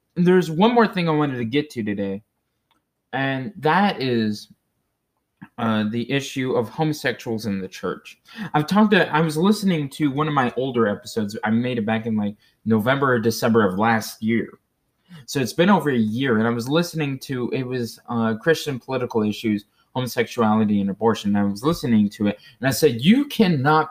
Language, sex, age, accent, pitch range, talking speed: English, male, 20-39, American, 115-155 Hz, 190 wpm